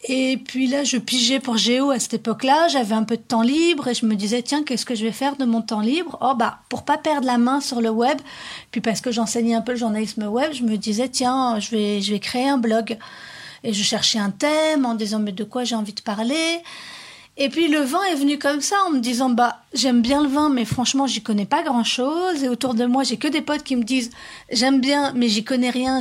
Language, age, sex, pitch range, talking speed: French, 40-59, female, 230-280 Hz, 260 wpm